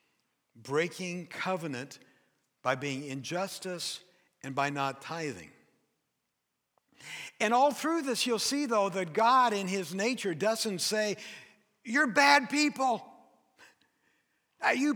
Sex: male